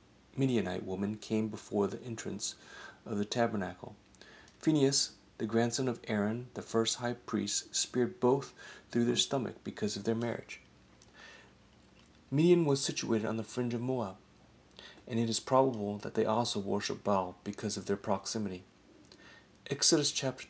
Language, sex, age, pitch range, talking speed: English, male, 40-59, 105-125 Hz, 145 wpm